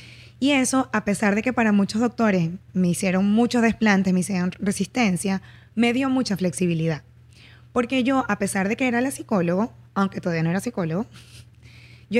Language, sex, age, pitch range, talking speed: Spanish, female, 20-39, 180-230 Hz, 170 wpm